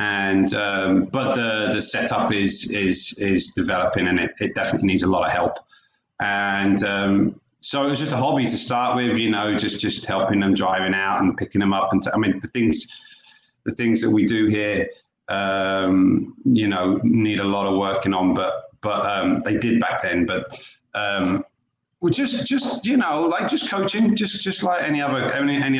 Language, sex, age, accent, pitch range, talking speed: English, male, 30-49, British, 100-135 Hz, 200 wpm